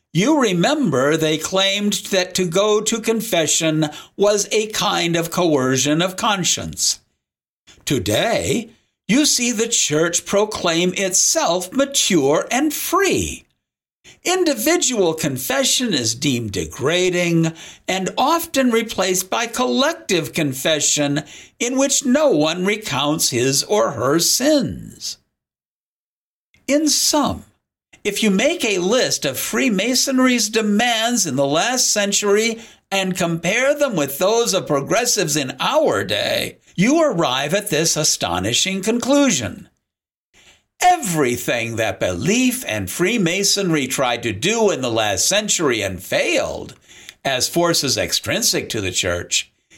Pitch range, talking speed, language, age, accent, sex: 160-240 Hz, 115 wpm, English, 60-79, American, male